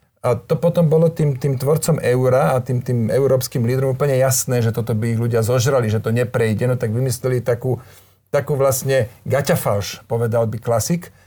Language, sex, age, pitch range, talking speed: Slovak, male, 40-59, 120-145 Hz, 180 wpm